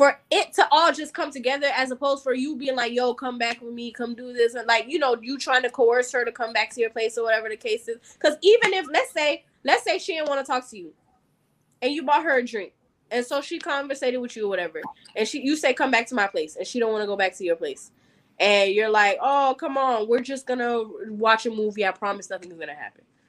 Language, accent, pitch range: English, American, 210-270 Hz